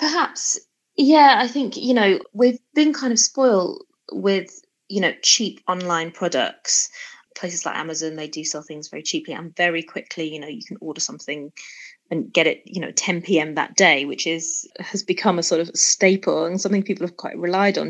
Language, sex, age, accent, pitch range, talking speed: English, female, 20-39, British, 165-205 Hz, 200 wpm